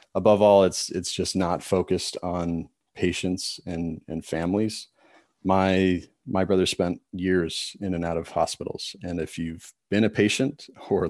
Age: 30-49